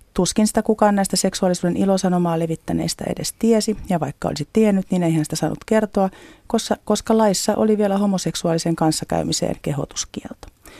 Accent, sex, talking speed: native, female, 145 wpm